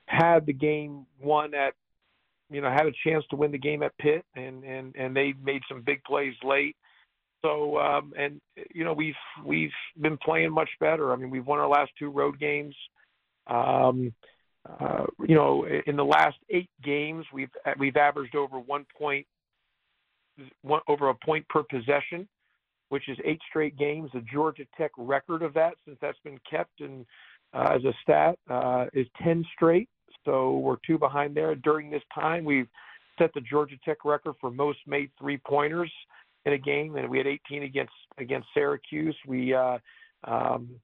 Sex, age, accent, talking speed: male, 50-69, American, 180 wpm